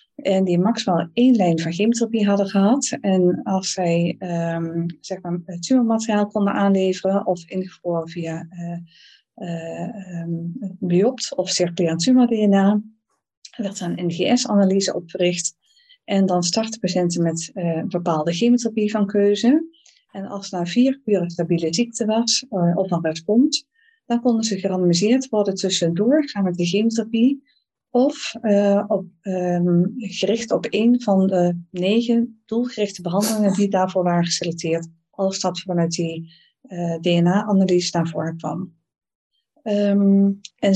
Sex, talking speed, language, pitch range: female, 140 wpm, Dutch, 175-225 Hz